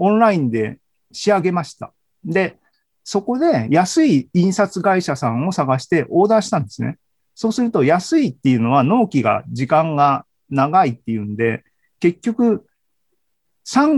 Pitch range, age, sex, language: 125-195 Hz, 40-59, male, Japanese